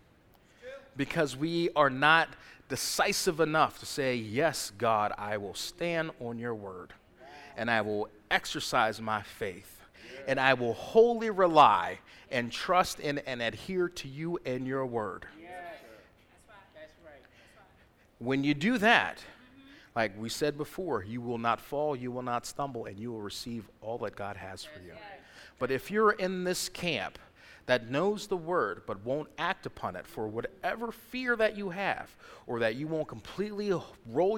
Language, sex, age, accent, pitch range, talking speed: English, male, 40-59, American, 125-195 Hz, 155 wpm